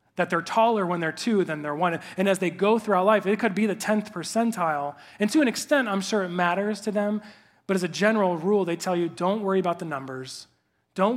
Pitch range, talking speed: 150-195 Hz, 240 wpm